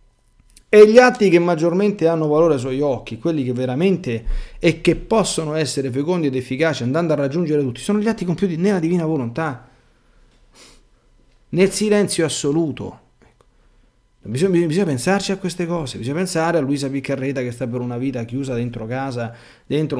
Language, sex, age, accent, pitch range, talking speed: Italian, male, 40-59, native, 115-155 Hz, 160 wpm